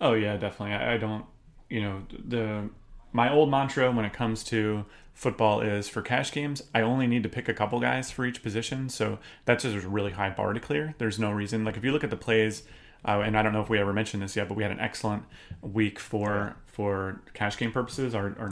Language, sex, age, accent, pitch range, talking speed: English, male, 30-49, American, 100-115 Hz, 240 wpm